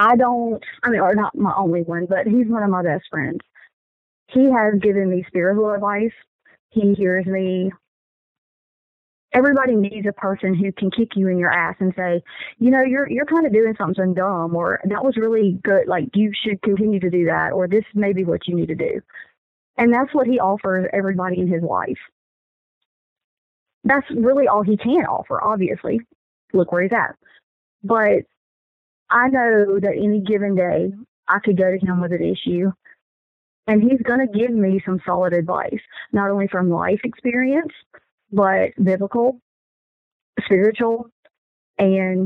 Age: 30-49